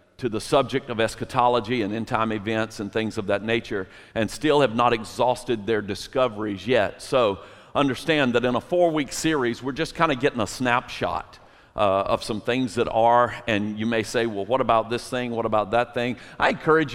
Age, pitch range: 50-69, 115-140 Hz